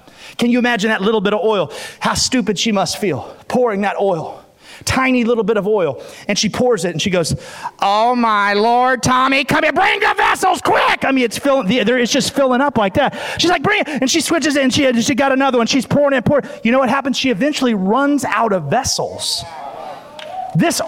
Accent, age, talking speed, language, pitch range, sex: American, 30-49, 230 wpm, English, 165-255 Hz, male